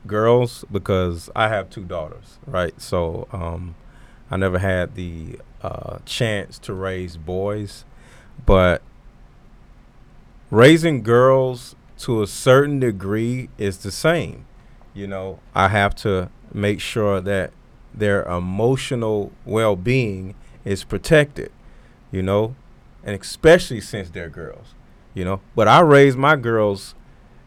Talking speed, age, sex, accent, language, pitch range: 120 wpm, 30-49, male, American, English, 100-135 Hz